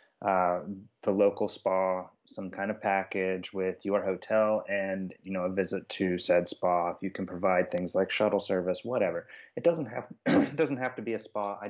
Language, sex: English, male